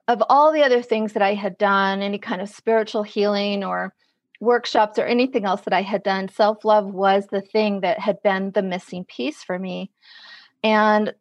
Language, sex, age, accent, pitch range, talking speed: English, female, 40-59, American, 195-235 Hz, 195 wpm